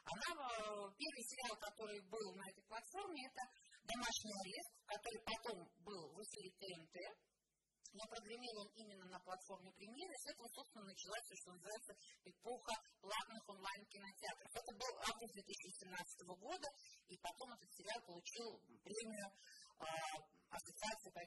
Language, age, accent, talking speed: Russian, 30-49, native, 150 wpm